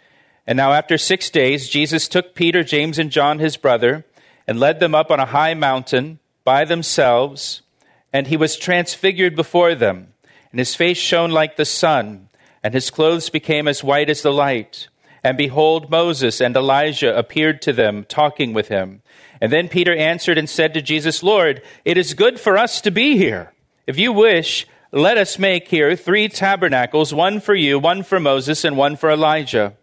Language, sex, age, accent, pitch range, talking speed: English, male, 40-59, American, 135-165 Hz, 185 wpm